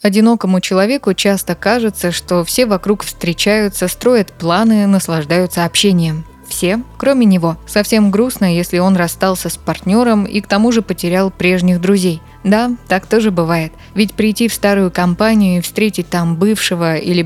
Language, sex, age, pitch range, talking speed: Russian, female, 20-39, 175-210 Hz, 150 wpm